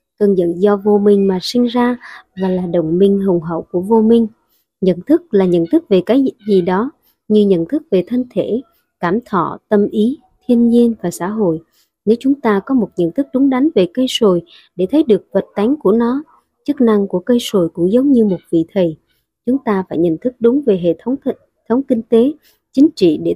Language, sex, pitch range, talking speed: Vietnamese, male, 180-245 Hz, 225 wpm